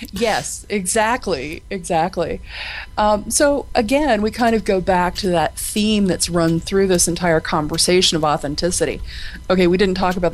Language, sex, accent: English, female, American